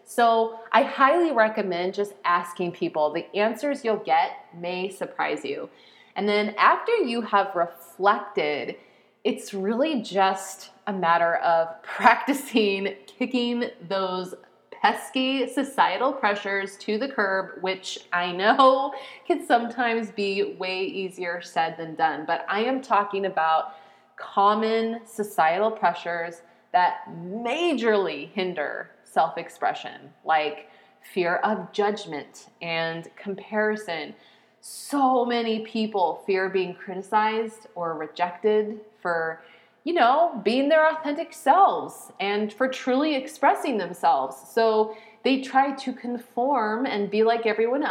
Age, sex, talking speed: 30-49, female, 115 wpm